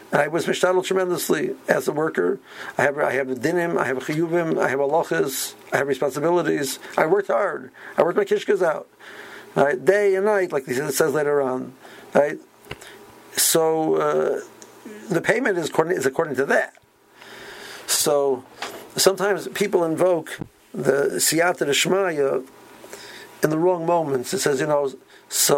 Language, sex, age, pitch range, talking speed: English, male, 50-69, 140-195 Hz, 160 wpm